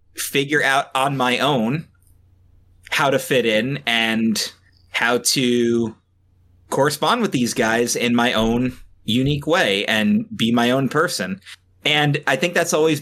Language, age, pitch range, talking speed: English, 30-49, 95-140 Hz, 145 wpm